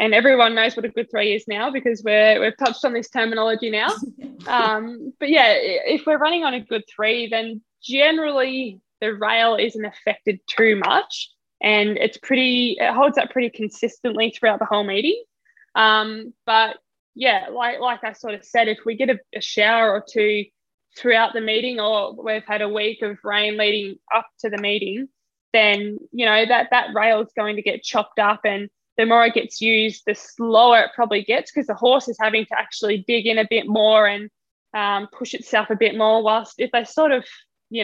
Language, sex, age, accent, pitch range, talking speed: English, female, 10-29, Australian, 210-235 Hz, 200 wpm